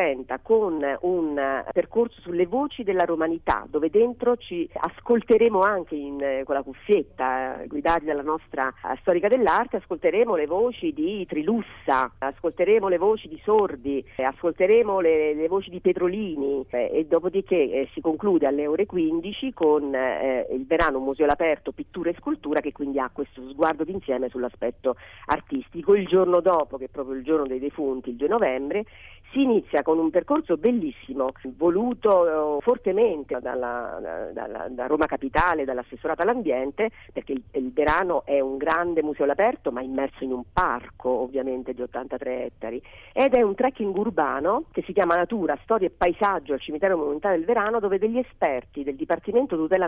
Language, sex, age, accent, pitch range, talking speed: Italian, female, 40-59, native, 135-215 Hz, 160 wpm